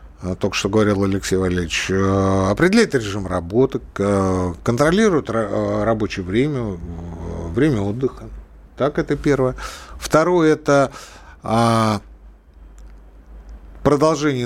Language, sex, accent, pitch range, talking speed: Russian, male, native, 95-145 Hz, 80 wpm